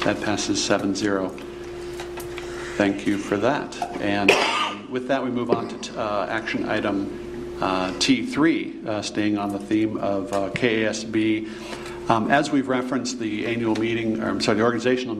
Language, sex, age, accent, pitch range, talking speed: English, male, 50-69, American, 105-120 Hz, 160 wpm